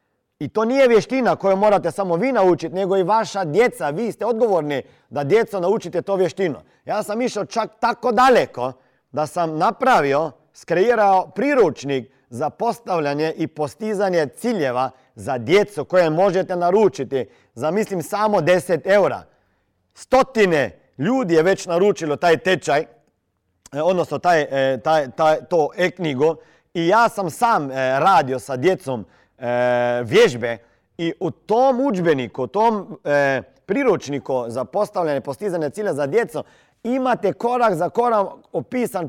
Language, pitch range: Croatian, 150-225 Hz